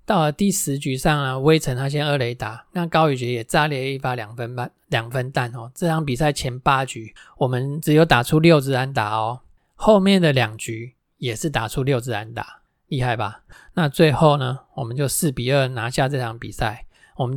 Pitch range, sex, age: 120-155 Hz, male, 20-39